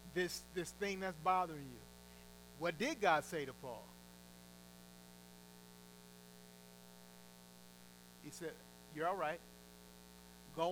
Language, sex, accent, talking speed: English, male, American, 100 wpm